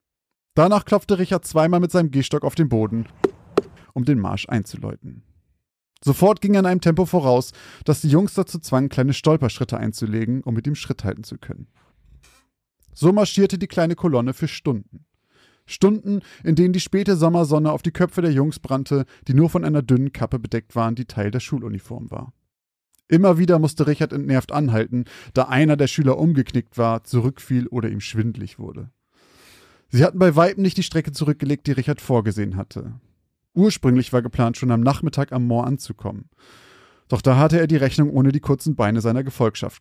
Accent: German